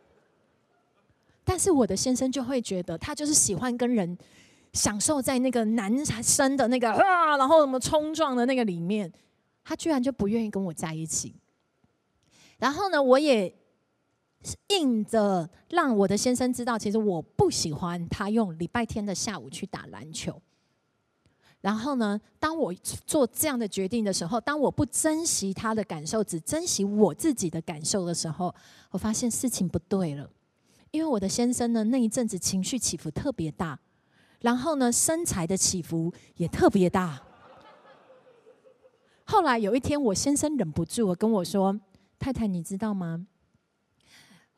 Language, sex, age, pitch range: Chinese, female, 30-49, 180-260 Hz